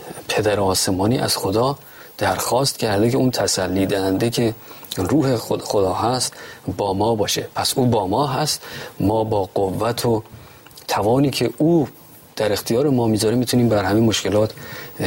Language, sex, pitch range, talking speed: Persian, male, 100-120 Hz, 145 wpm